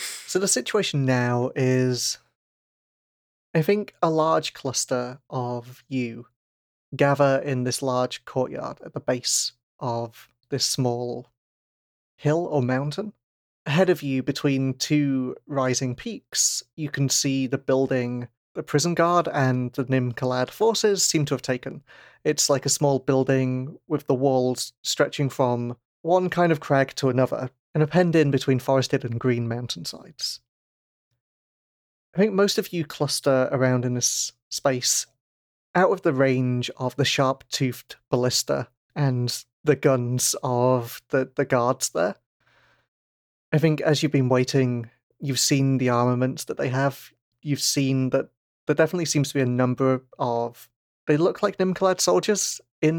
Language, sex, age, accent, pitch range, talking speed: English, male, 30-49, British, 125-150 Hz, 145 wpm